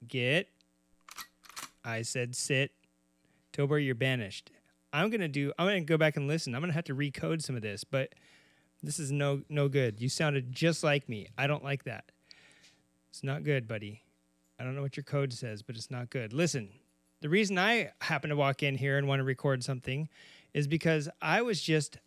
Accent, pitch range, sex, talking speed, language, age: American, 125-155 Hz, male, 200 wpm, English, 30-49